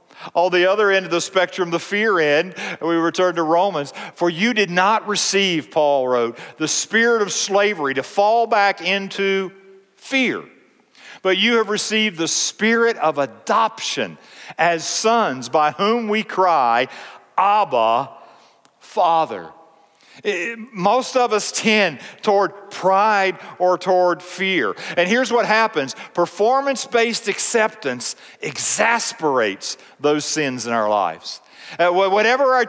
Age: 50-69